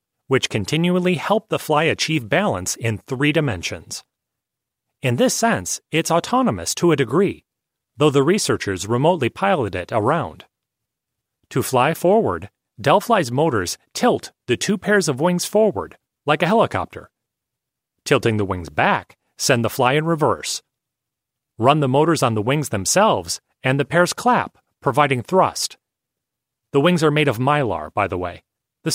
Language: English